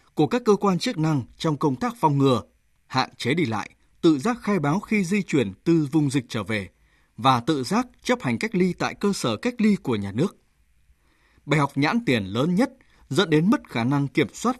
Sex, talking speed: male, 225 wpm